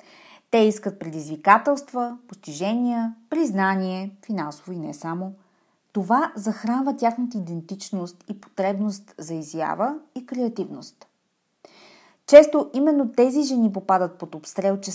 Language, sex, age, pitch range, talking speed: Bulgarian, female, 30-49, 185-245 Hz, 110 wpm